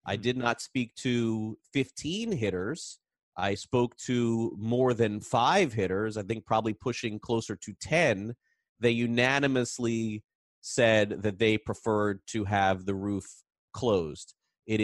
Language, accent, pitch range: English, American, 110-135 Hz